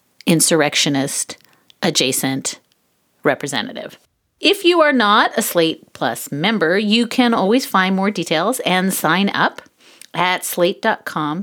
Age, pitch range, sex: 40-59, 180-255 Hz, female